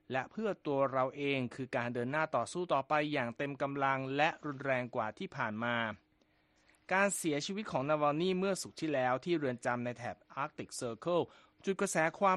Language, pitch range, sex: Thai, 125-165 Hz, male